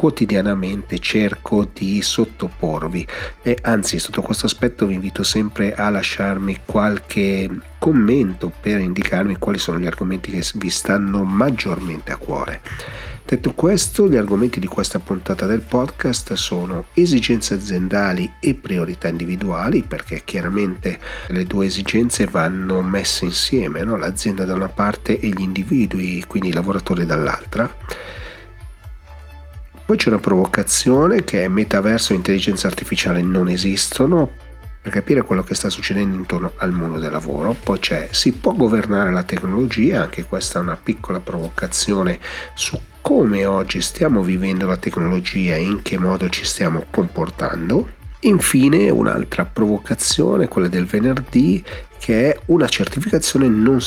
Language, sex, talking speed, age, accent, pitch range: Italian, male, 135 wpm, 40-59, native, 90-105 Hz